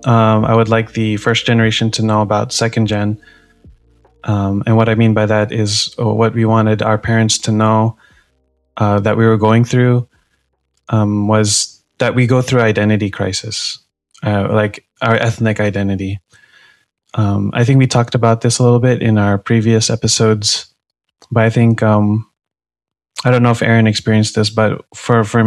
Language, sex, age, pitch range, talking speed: English, male, 20-39, 105-115 Hz, 175 wpm